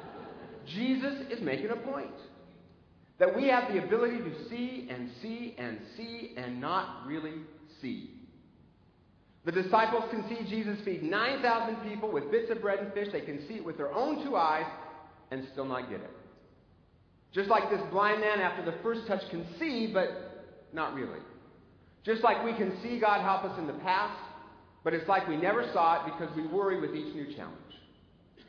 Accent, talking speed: American, 185 wpm